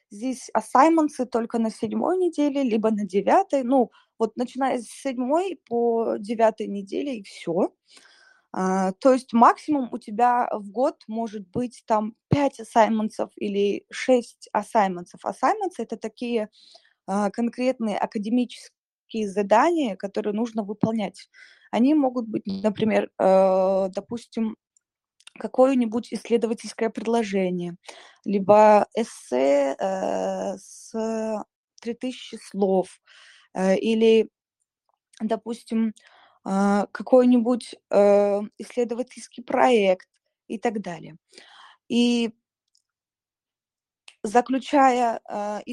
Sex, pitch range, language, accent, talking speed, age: female, 210-255 Hz, Russian, native, 95 wpm, 20-39